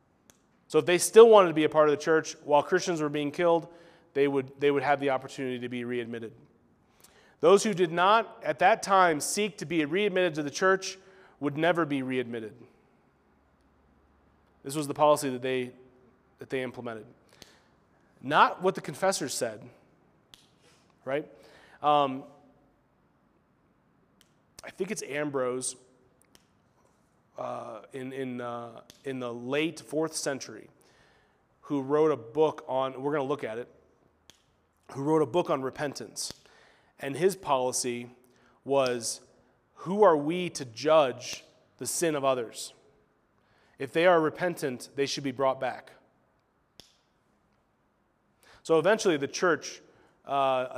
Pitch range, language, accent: 130-160 Hz, English, American